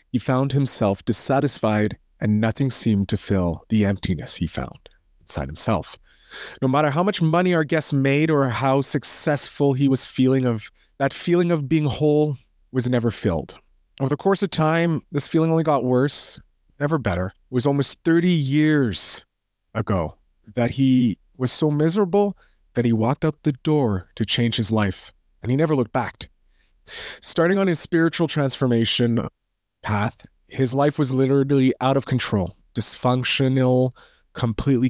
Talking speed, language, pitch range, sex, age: 155 wpm, English, 115-145 Hz, male, 30-49